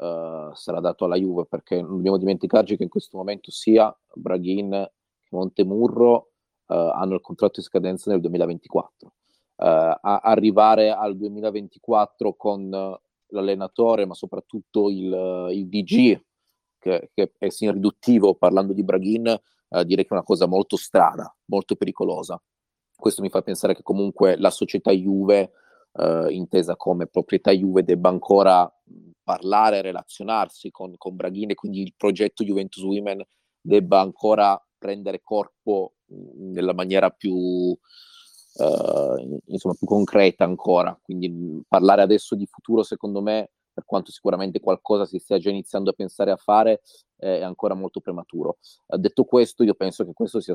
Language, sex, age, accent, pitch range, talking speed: Italian, male, 30-49, native, 95-105 Hz, 145 wpm